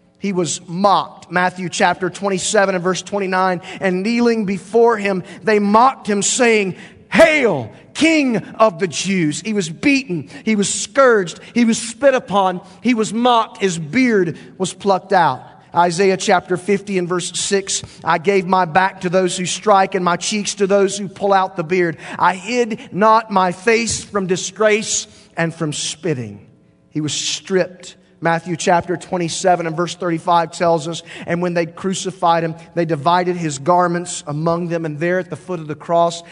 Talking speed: 170 wpm